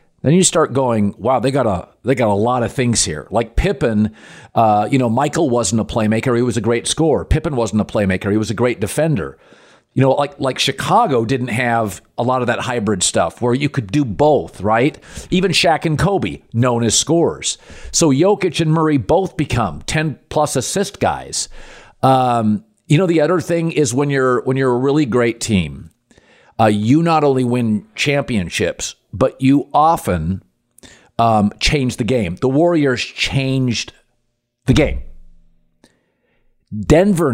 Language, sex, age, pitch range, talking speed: English, male, 50-69, 115-155 Hz, 175 wpm